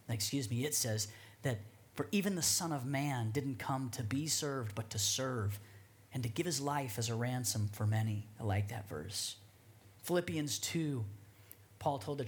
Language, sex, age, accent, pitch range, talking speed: English, male, 40-59, American, 110-145 Hz, 185 wpm